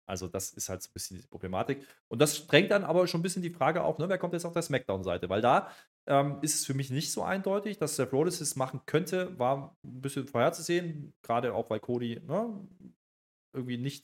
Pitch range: 115-155 Hz